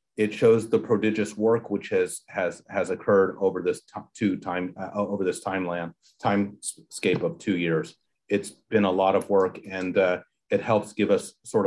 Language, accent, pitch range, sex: English, American, 105-130 Hz, male